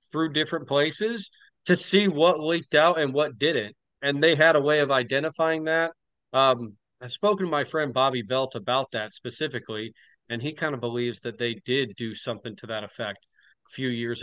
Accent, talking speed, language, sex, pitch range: American, 195 wpm, English, male, 120-150 Hz